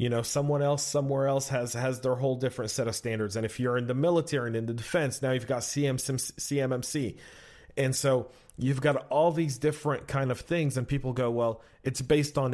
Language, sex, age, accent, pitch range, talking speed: English, male, 40-59, American, 115-140 Hz, 215 wpm